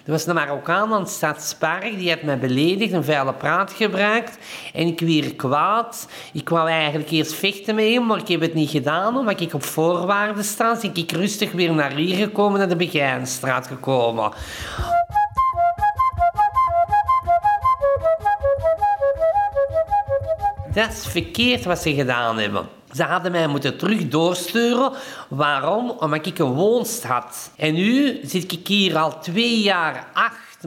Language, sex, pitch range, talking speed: Dutch, male, 155-225 Hz, 150 wpm